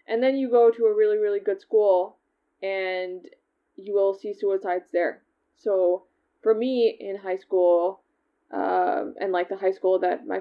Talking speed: 175 wpm